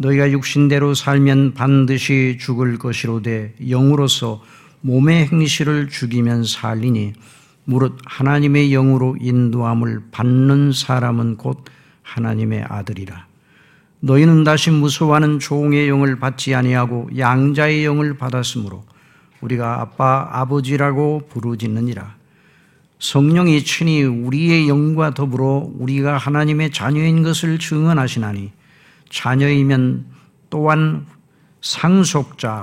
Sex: male